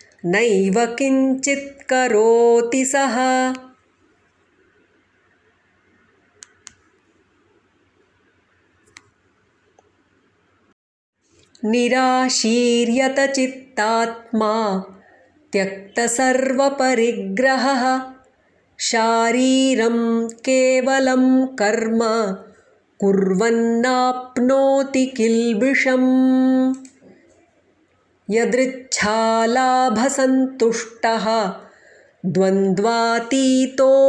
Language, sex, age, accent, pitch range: English, female, 30-49, Indian, 225-260 Hz